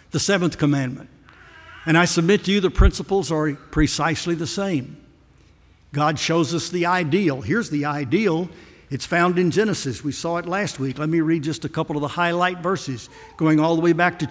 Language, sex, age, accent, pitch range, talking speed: English, male, 60-79, American, 145-180 Hz, 195 wpm